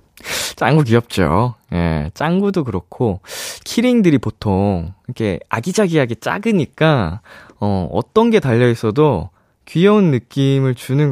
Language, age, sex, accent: Korean, 20-39, male, native